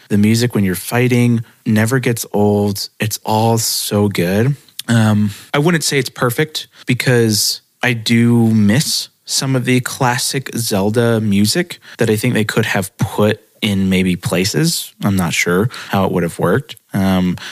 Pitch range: 100-120 Hz